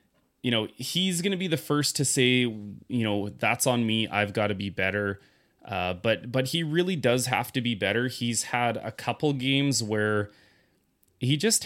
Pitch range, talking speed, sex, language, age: 105-130 Hz, 195 wpm, male, English, 20-39